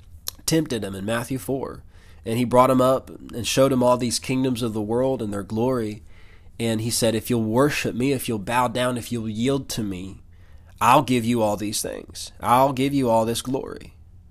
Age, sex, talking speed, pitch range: 20-39, male, 210 wpm, 100-130 Hz